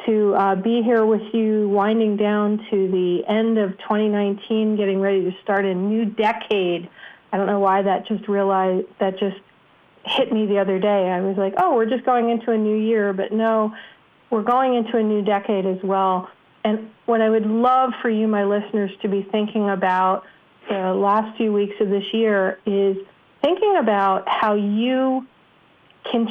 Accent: American